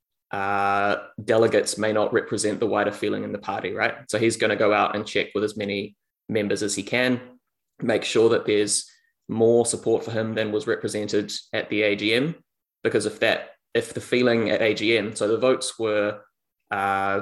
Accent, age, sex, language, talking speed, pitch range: Australian, 20-39, male, English, 190 wpm, 105-120 Hz